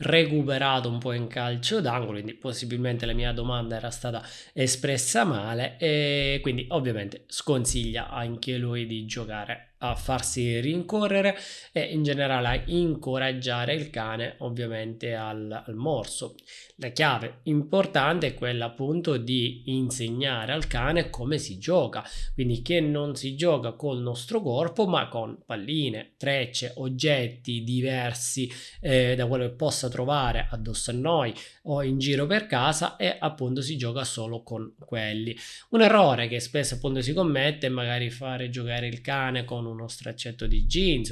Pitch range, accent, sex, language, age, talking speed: 120-140 Hz, native, male, Italian, 20-39, 150 wpm